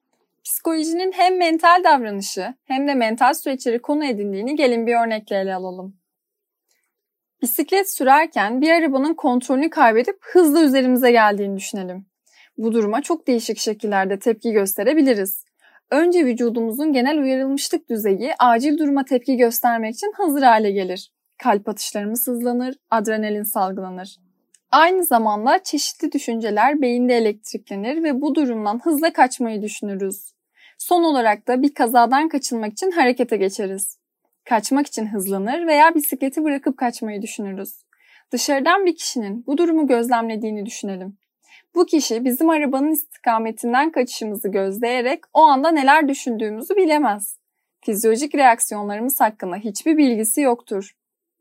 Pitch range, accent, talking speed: 220-310 Hz, native, 120 wpm